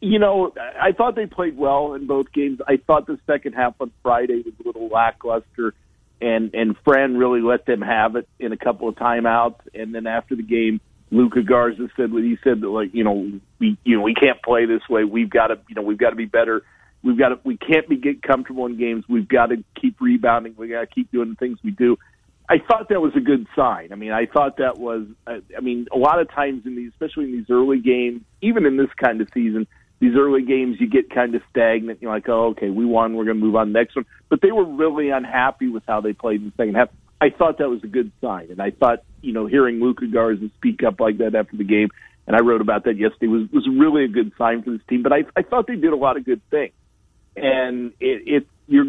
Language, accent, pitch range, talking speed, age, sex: English, American, 115-145 Hz, 260 wpm, 50-69, male